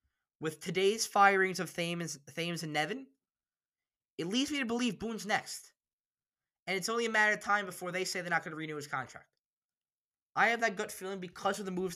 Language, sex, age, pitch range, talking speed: English, male, 10-29, 130-200 Hz, 205 wpm